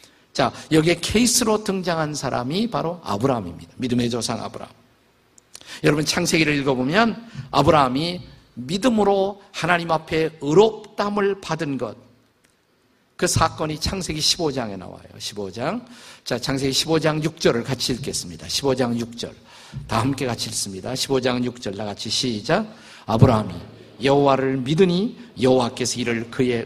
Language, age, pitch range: Korean, 50-69, 120-160 Hz